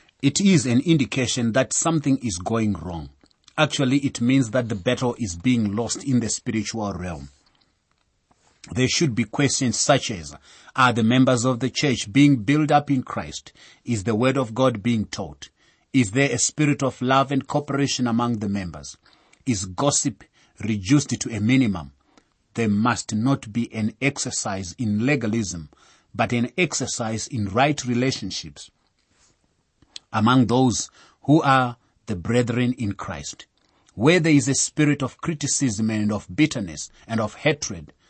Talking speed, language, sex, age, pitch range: 155 wpm, English, male, 30-49, 105-135 Hz